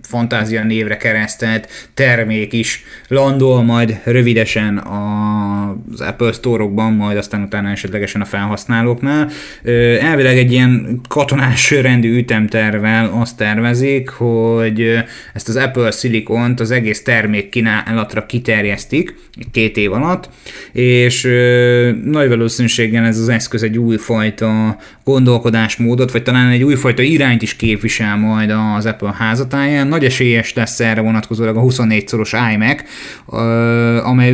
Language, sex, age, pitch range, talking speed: Hungarian, male, 20-39, 110-125 Hz, 115 wpm